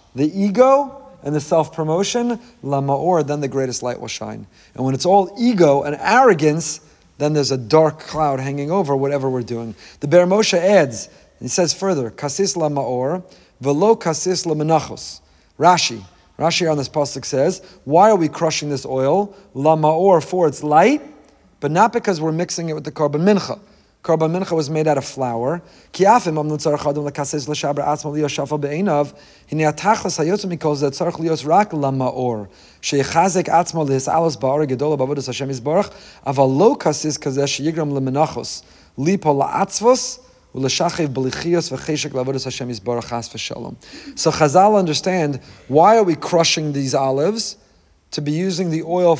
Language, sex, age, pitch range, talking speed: English, male, 40-59, 135-175 Hz, 165 wpm